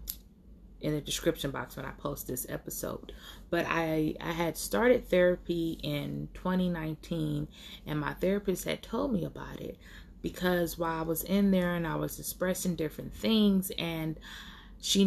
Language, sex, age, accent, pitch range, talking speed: English, female, 20-39, American, 150-175 Hz, 155 wpm